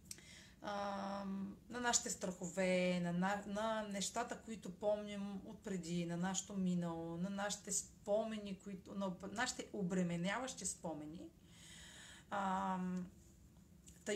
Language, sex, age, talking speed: Bulgarian, female, 30-49, 100 wpm